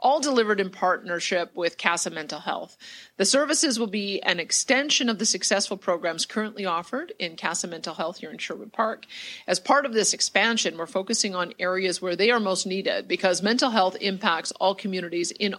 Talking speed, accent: 190 wpm, American